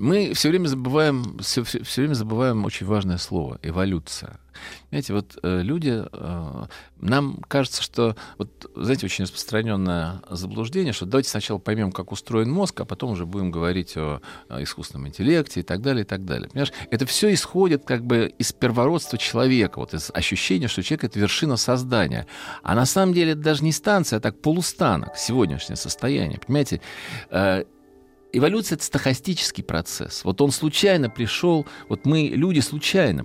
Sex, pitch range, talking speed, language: male, 100-145 Hz, 165 wpm, Russian